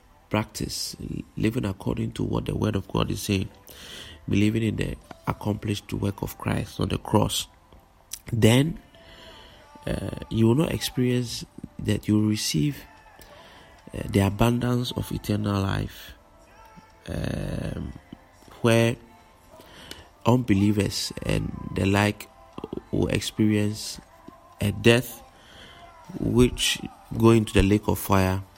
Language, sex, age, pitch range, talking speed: English, male, 30-49, 95-120 Hz, 110 wpm